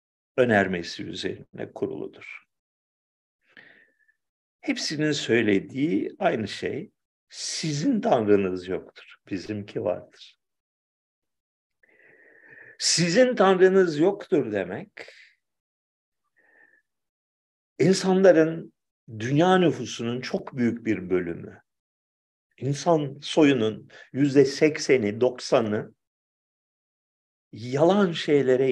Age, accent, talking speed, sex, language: 50-69, native, 65 wpm, male, Turkish